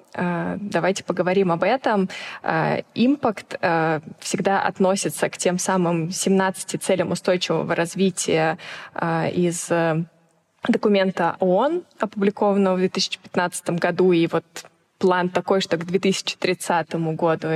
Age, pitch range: 20-39, 170-195 Hz